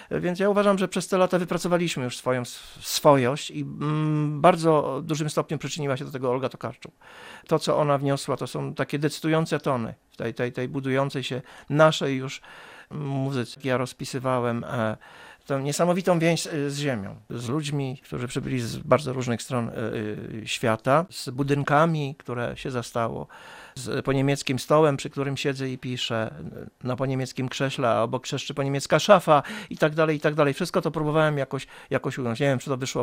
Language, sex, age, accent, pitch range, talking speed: Polish, male, 50-69, native, 130-155 Hz, 170 wpm